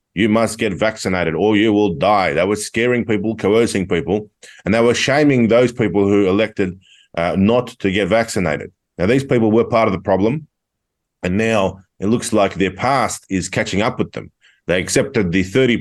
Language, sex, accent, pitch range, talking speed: English, male, Australian, 90-115 Hz, 195 wpm